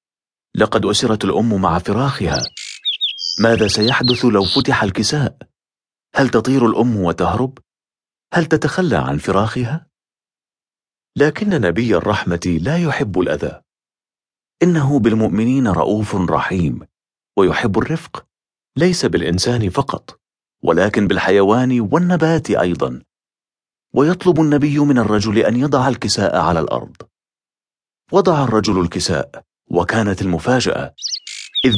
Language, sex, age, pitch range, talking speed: English, male, 40-59, 95-130 Hz, 100 wpm